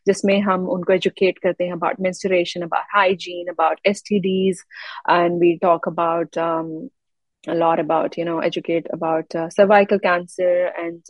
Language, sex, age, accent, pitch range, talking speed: Hindi, female, 30-49, native, 175-205 Hz, 145 wpm